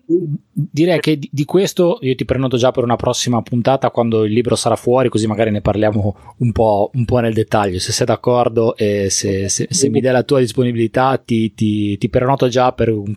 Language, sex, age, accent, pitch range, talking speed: Italian, male, 20-39, native, 105-130 Hz, 210 wpm